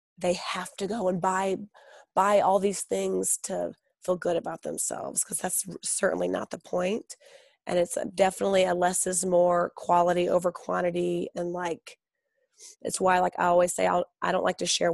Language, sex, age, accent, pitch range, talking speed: English, female, 30-49, American, 175-200 Hz, 185 wpm